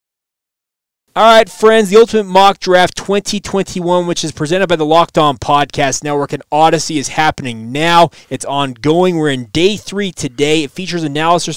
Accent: American